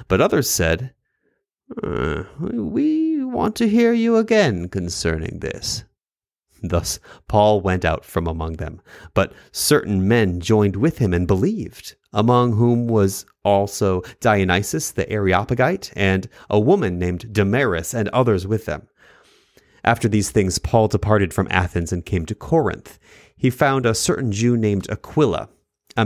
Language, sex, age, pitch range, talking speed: English, male, 30-49, 95-125 Hz, 145 wpm